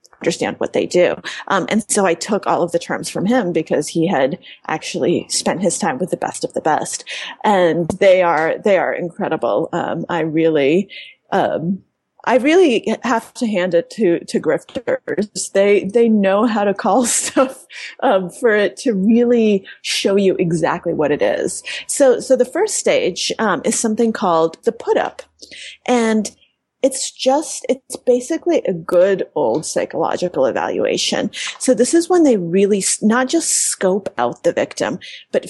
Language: English